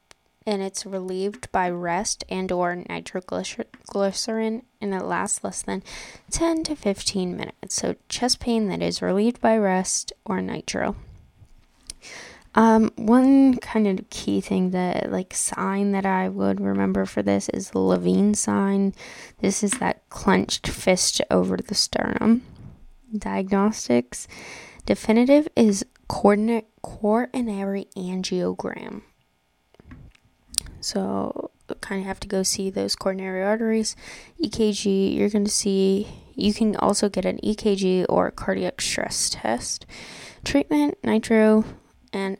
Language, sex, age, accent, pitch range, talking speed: English, female, 10-29, American, 185-225 Hz, 125 wpm